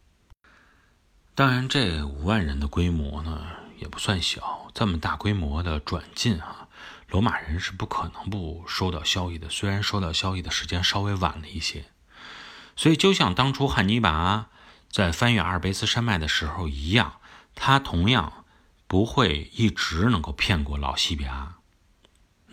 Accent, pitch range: native, 80-105 Hz